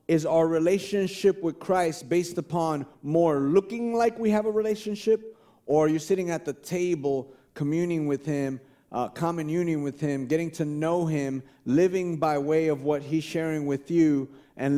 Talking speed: 175 wpm